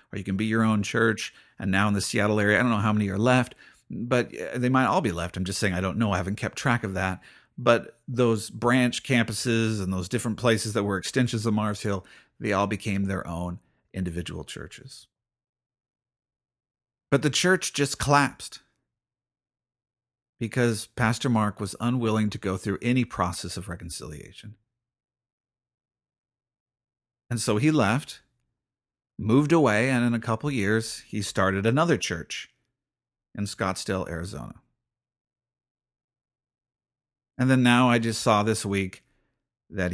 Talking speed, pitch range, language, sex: 155 wpm, 100-125 Hz, English, male